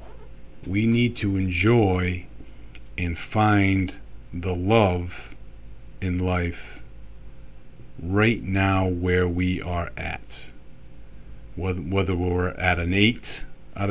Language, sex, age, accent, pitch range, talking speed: English, male, 50-69, American, 90-110 Hz, 100 wpm